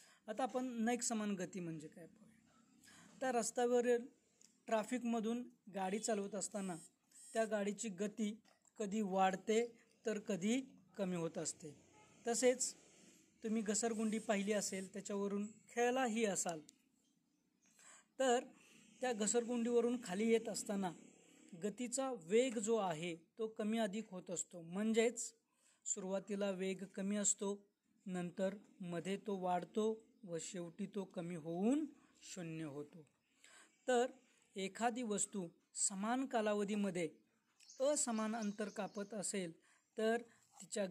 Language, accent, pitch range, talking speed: Marathi, native, 190-235 Hz, 90 wpm